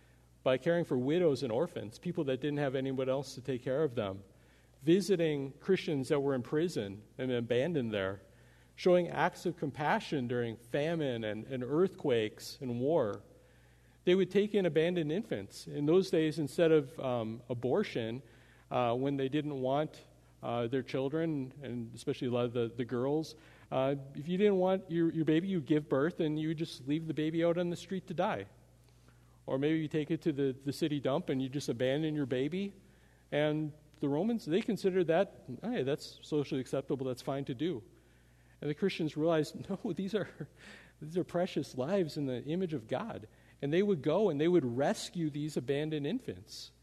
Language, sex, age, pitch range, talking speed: English, male, 50-69, 125-165 Hz, 185 wpm